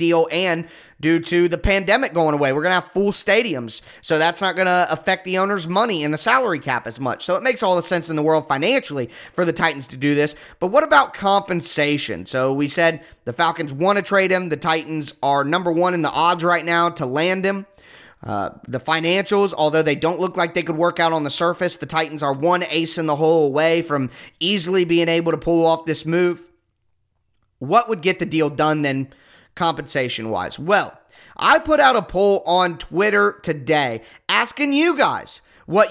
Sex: male